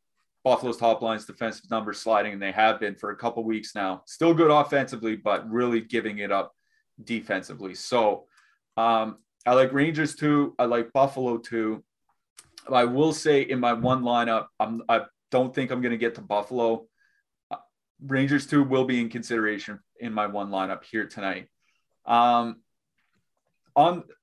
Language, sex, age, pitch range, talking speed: English, male, 30-49, 115-140 Hz, 165 wpm